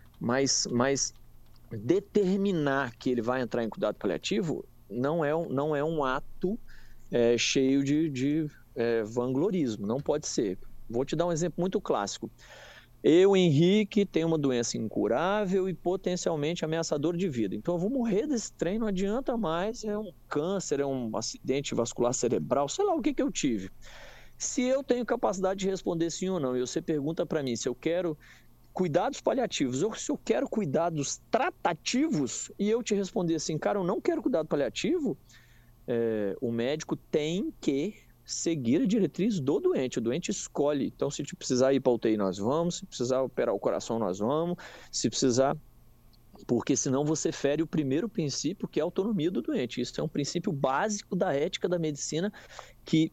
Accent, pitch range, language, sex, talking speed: Brazilian, 125-190 Hz, Portuguese, male, 180 wpm